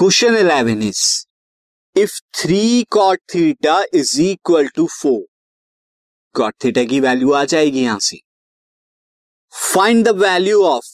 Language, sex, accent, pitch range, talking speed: Hindi, male, native, 140-215 Hz, 115 wpm